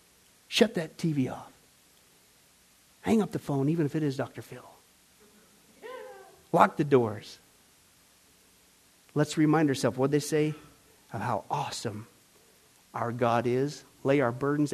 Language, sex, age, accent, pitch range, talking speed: English, male, 50-69, American, 125-160 Hz, 130 wpm